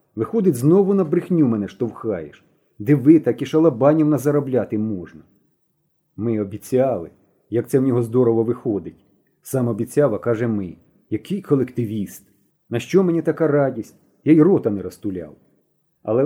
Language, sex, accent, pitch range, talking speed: Ukrainian, male, native, 115-165 Hz, 140 wpm